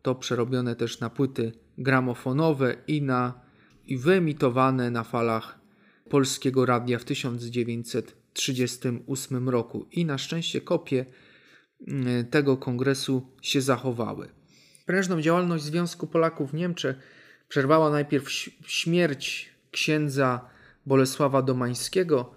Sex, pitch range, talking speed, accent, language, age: male, 125-155 Hz, 100 wpm, native, Polish, 40-59